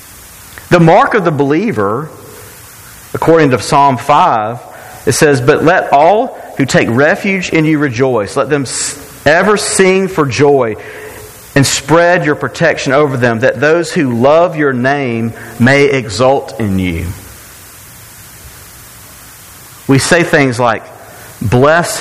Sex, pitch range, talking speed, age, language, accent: male, 110-150 Hz, 130 wpm, 40-59, English, American